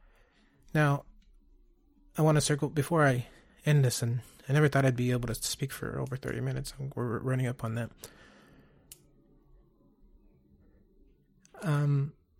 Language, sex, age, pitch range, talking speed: English, male, 30-49, 110-135 Hz, 135 wpm